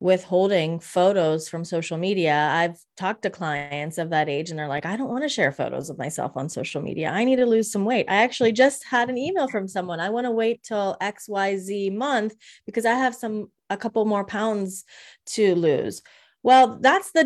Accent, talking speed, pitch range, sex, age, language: American, 215 wpm, 175-235 Hz, female, 30-49, English